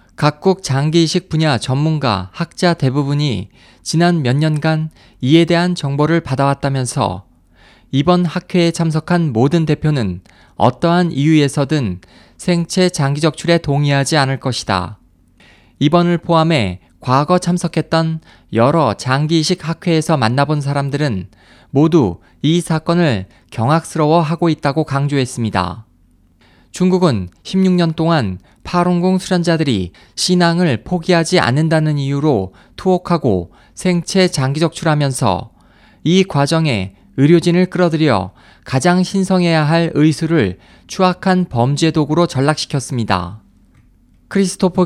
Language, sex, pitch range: Korean, male, 115-170 Hz